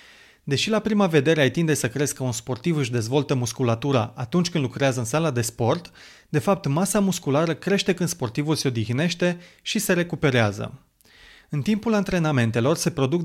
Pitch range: 130-175 Hz